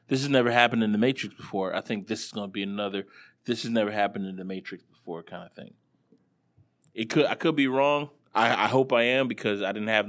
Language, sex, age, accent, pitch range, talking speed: English, male, 20-39, American, 105-145 Hz, 245 wpm